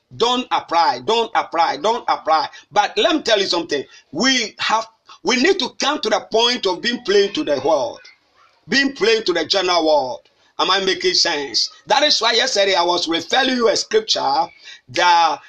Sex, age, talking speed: male, 50-69, 185 wpm